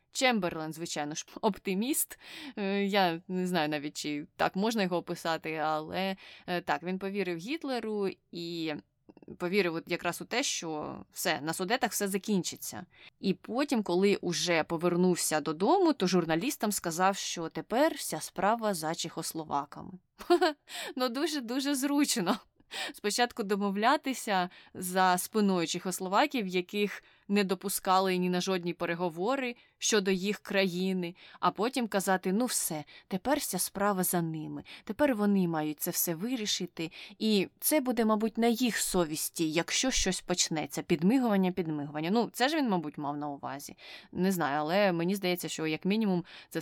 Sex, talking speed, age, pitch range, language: female, 140 wpm, 20-39, 170-215 Hz, Ukrainian